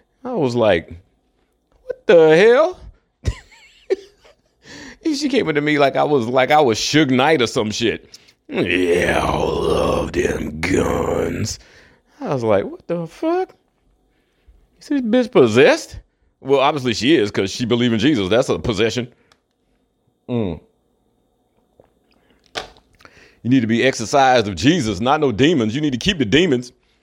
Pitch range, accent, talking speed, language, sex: 105-150 Hz, American, 145 wpm, English, male